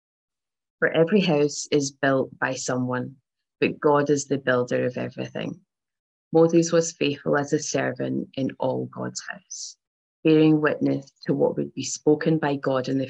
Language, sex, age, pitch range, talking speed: English, female, 20-39, 125-150 Hz, 160 wpm